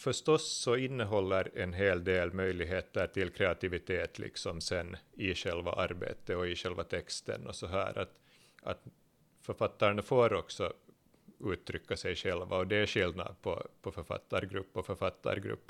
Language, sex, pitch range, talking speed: Swedish, male, 95-115 Hz, 145 wpm